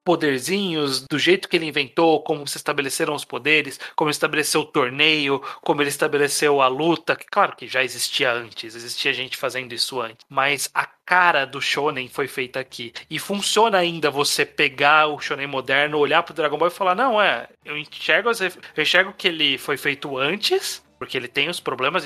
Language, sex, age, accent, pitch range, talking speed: Portuguese, male, 30-49, Brazilian, 135-180 Hz, 195 wpm